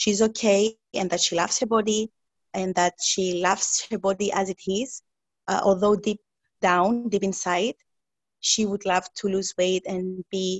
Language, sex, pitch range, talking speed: English, female, 185-215 Hz, 175 wpm